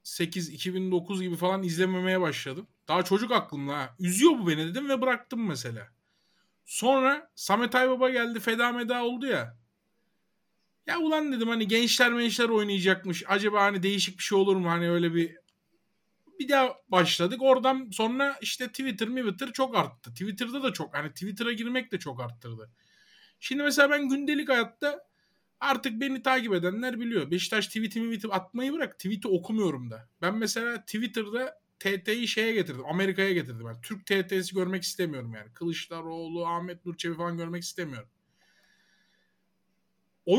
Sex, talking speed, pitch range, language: male, 155 wpm, 170-240 Hz, Turkish